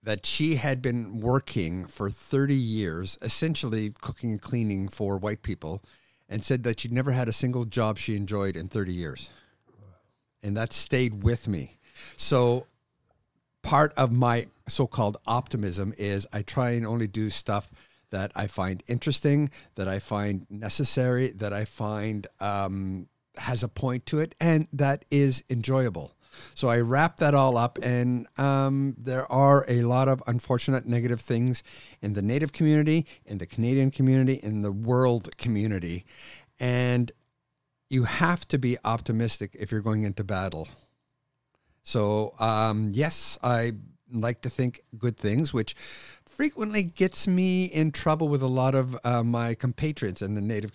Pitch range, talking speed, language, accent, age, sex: 105-130 Hz, 155 wpm, English, American, 50-69, male